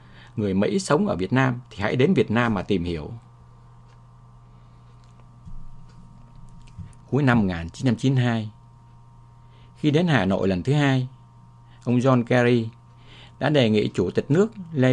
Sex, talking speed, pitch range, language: male, 135 wpm, 110-130 Hz, English